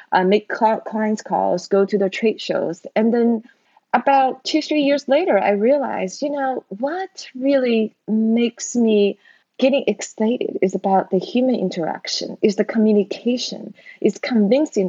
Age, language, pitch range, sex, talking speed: 20-39, English, 185-245 Hz, female, 145 wpm